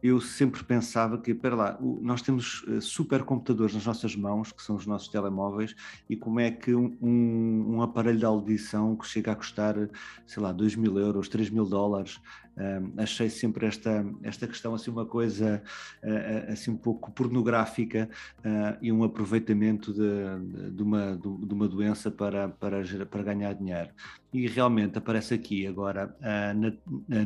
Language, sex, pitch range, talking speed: Portuguese, male, 105-115 Hz, 165 wpm